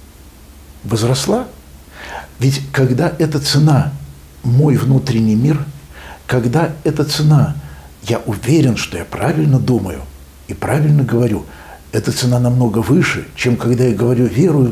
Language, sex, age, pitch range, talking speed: Russian, male, 60-79, 100-145 Hz, 120 wpm